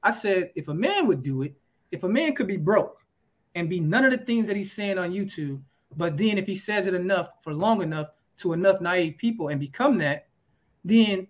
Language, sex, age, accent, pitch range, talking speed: English, male, 20-39, American, 175-225 Hz, 230 wpm